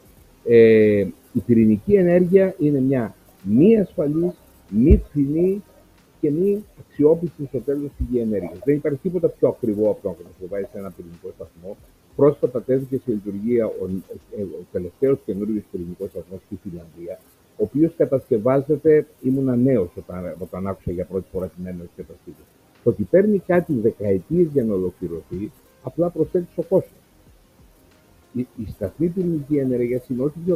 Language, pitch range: Greek, 100-155 Hz